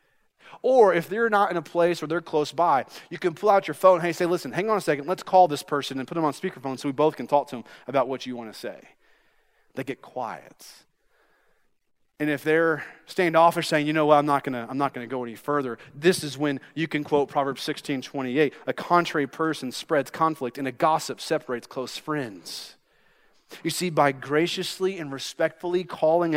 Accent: American